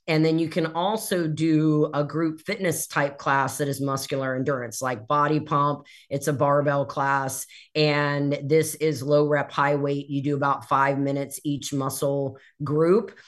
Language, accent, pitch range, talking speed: English, American, 140-155 Hz, 165 wpm